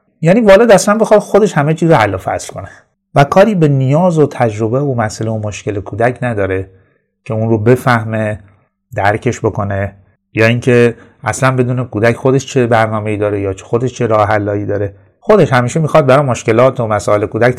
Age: 30-49